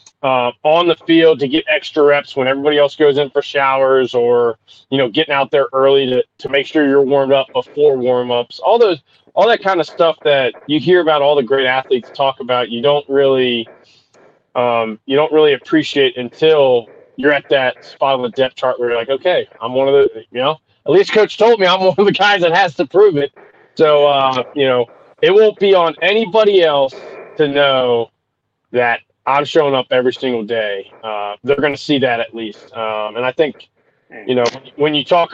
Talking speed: 210 wpm